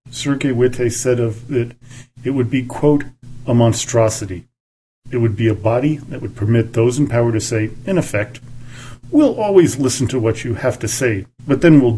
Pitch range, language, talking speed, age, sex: 115-130 Hz, English, 190 wpm, 40-59, male